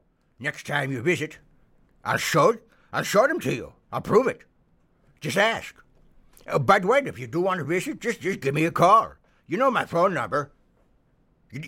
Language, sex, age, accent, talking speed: English, male, 60-79, American, 200 wpm